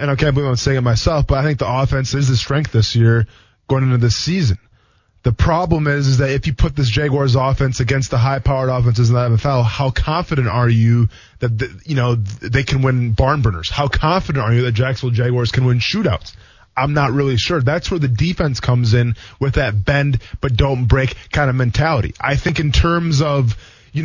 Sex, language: male, English